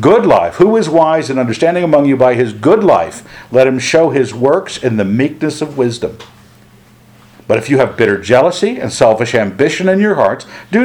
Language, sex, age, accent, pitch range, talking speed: English, male, 60-79, American, 110-150 Hz, 200 wpm